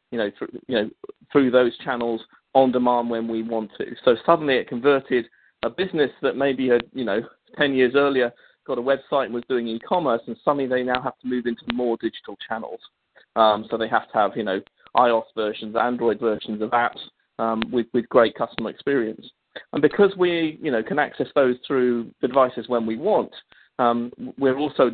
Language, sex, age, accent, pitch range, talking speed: English, male, 40-59, British, 115-135 Hz, 200 wpm